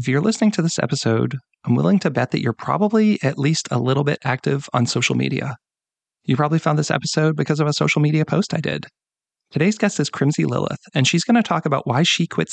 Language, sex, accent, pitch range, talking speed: English, male, American, 135-175 Hz, 235 wpm